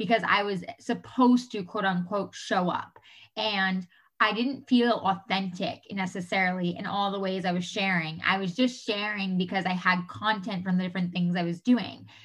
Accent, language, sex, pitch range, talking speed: American, English, female, 185-225 Hz, 180 wpm